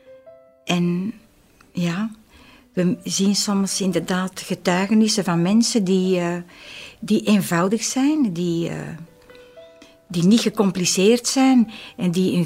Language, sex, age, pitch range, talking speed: Dutch, female, 60-79, 170-215 Hz, 110 wpm